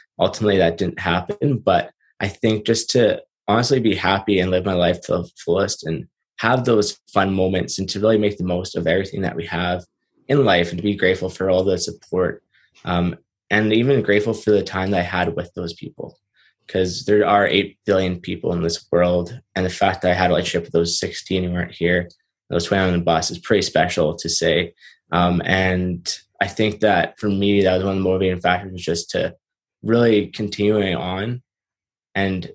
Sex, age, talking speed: male, 20-39, 205 wpm